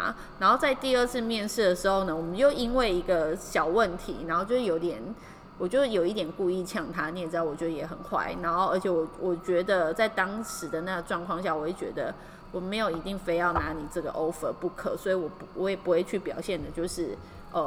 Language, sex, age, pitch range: Chinese, female, 20-39, 170-220 Hz